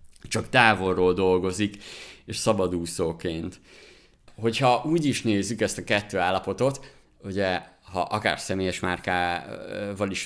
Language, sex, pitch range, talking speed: Hungarian, male, 90-110 Hz, 110 wpm